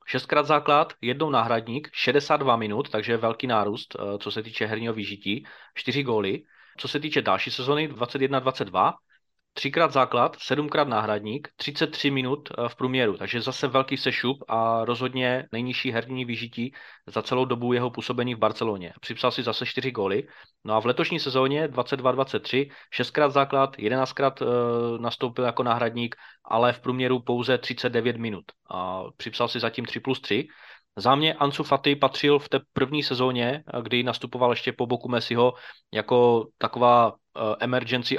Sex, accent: male, native